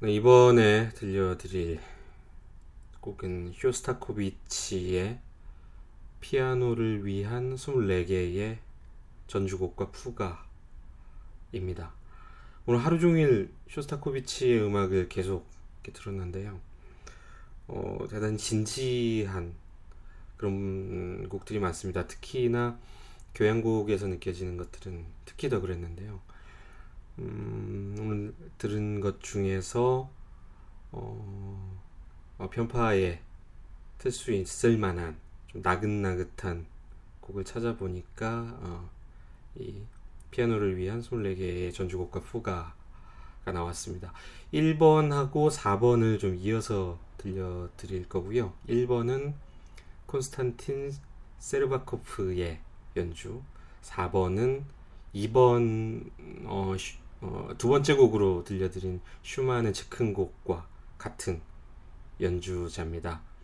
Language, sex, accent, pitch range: Korean, male, native, 90-115 Hz